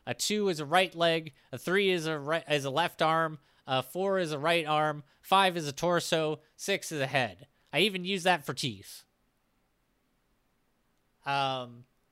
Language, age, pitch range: English, 30-49, 140-190 Hz